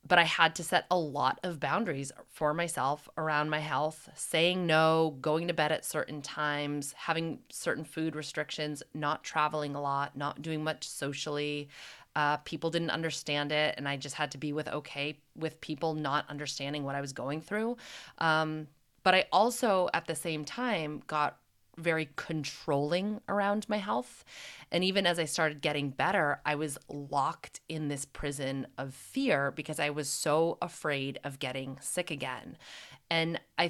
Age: 20-39